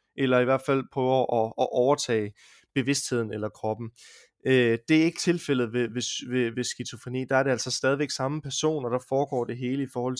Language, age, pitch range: Danish, 20-39, 120-140 Hz